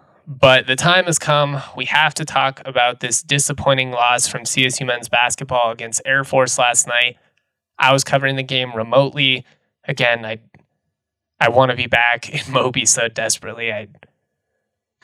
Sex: male